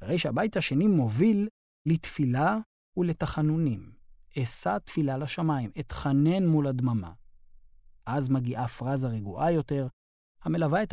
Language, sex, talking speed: Hebrew, male, 105 wpm